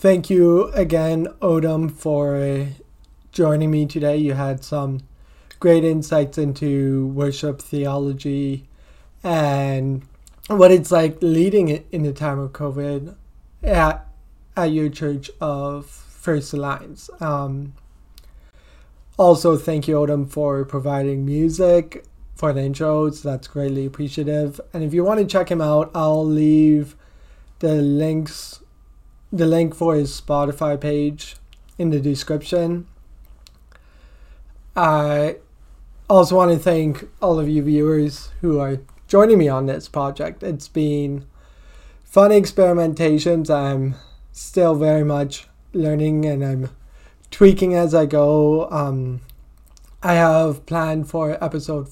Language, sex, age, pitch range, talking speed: English, male, 20-39, 135-160 Hz, 120 wpm